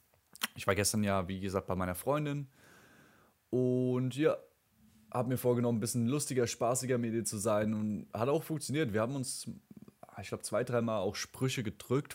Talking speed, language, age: 180 wpm, German, 20-39